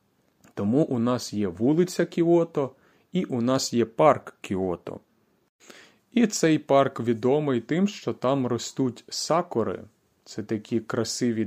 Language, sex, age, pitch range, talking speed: Ukrainian, male, 30-49, 115-165 Hz, 125 wpm